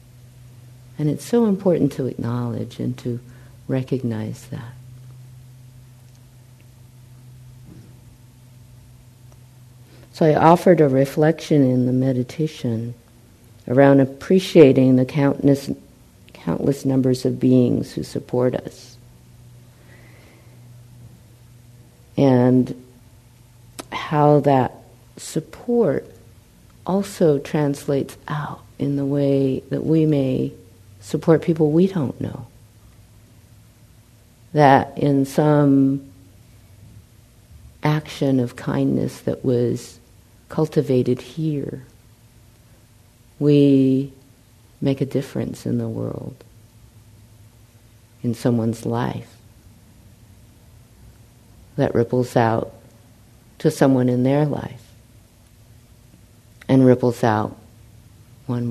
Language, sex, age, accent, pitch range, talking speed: English, female, 50-69, American, 115-135 Hz, 80 wpm